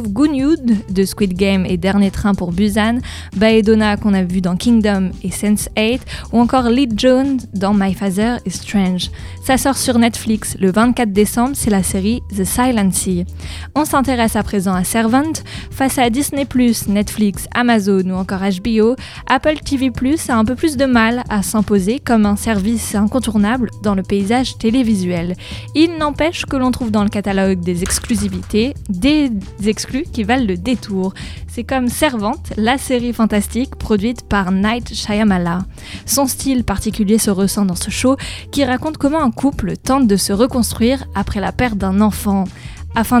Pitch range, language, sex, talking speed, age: 200-250 Hz, French, female, 170 wpm, 20-39